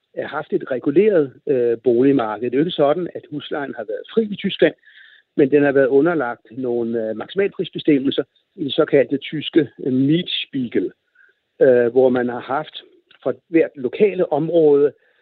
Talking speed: 160 wpm